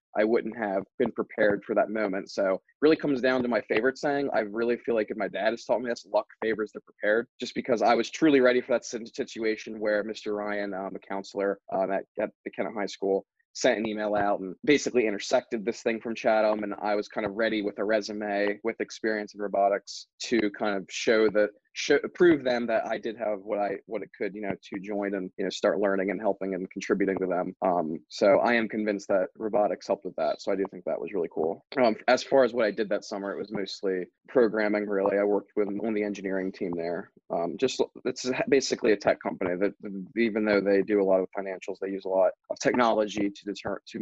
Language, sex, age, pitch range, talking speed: English, male, 20-39, 95-110 Hz, 235 wpm